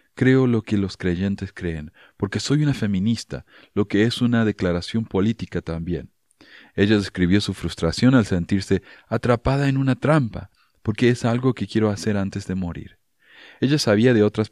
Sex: male